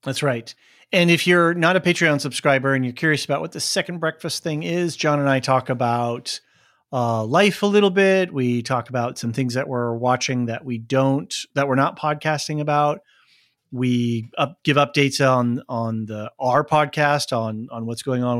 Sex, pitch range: male, 125-150 Hz